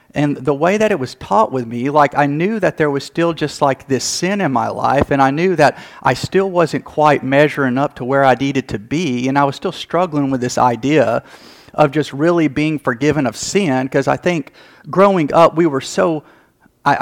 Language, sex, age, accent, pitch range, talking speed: English, male, 40-59, American, 130-165 Hz, 220 wpm